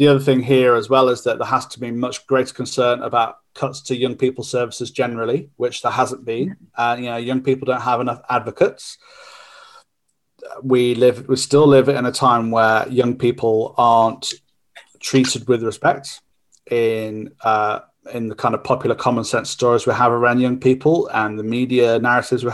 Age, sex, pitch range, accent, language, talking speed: 30-49, male, 120-135 Hz, British, English, 190 wpm